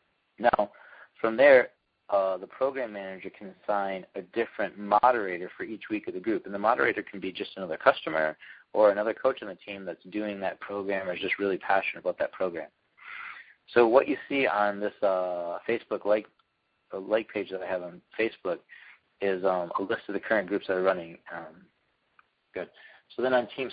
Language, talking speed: English, 195 wpm